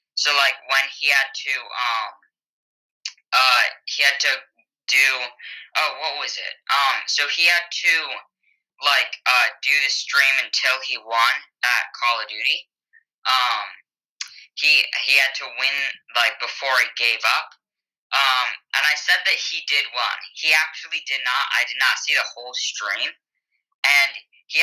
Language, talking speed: English, 160 wpm